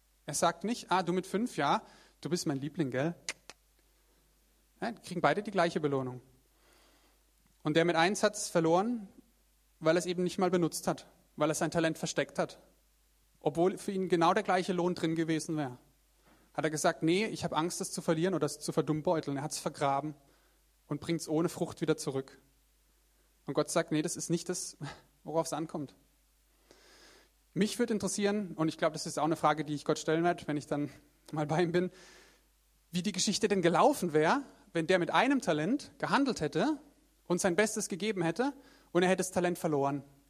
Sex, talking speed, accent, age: male, 195 wpm, German, 30-49